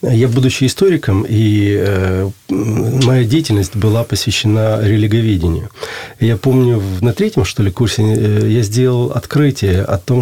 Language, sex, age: Russian, male, 40-59